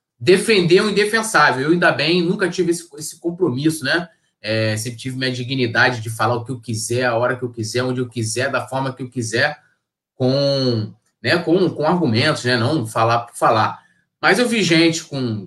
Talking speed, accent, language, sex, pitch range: 200 wpm, Brazilian, Portuguese, male, 130-215 Hz